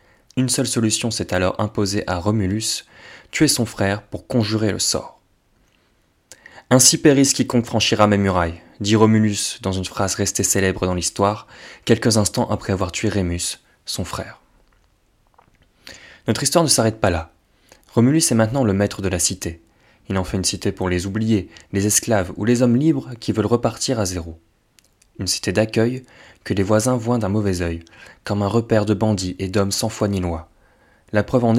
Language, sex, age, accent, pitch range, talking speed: French, male, 20-39, French, 95-115 Hz, 180 wpm